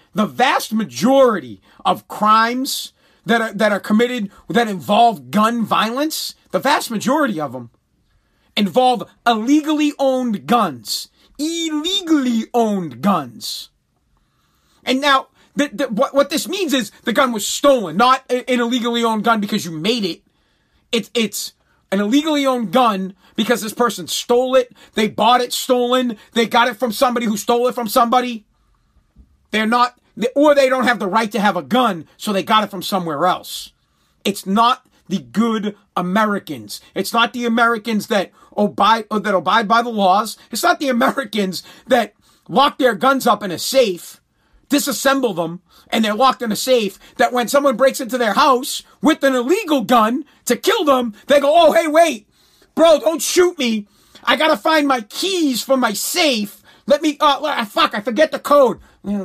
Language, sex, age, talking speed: English, male, 40-59, 170 wpm